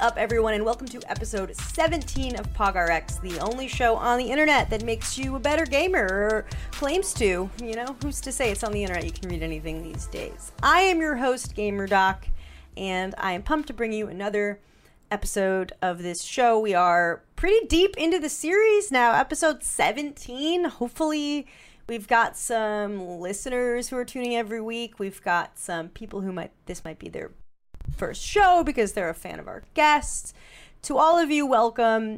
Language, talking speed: English, 190 wpm